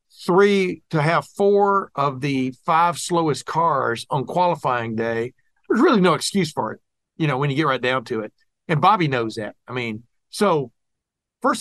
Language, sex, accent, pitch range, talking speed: English, male, American, 125-160 Hz, 180 wpm